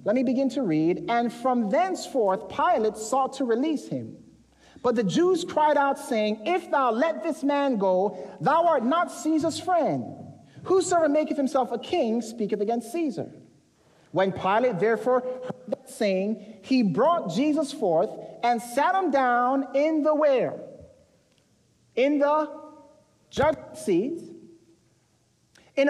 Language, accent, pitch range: English, American, 230-305 Hz